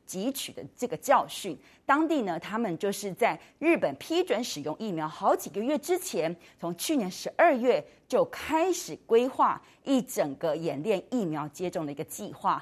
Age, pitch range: 30-49, 165-280 Hz